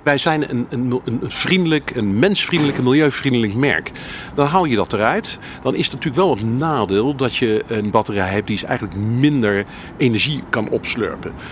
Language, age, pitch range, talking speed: Dutch, 50-69, 105-140 Hz, 170 wpm